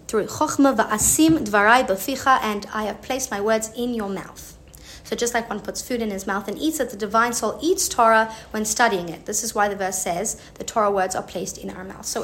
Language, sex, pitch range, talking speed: English, female, 210-270 Hz, 220 wpm